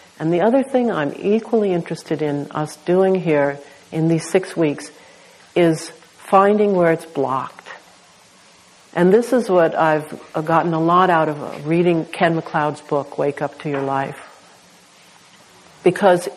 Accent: American